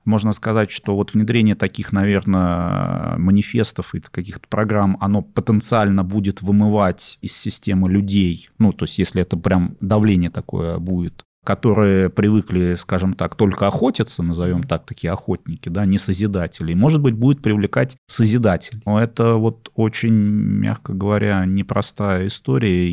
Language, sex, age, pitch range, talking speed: Russian, male, 30-49, 95-120 Hz, 140 wpm